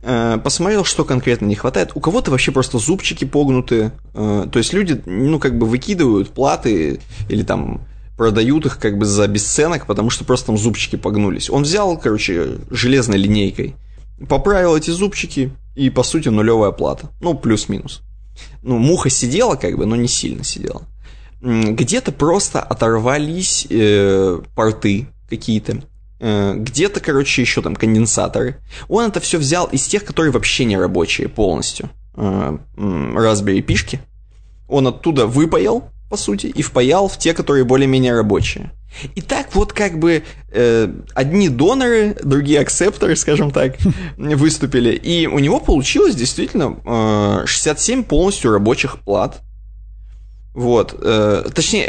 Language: Russian